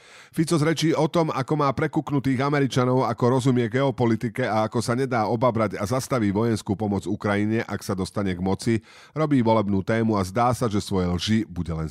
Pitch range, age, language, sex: 100-135 Hz, 40-59, Slovak, male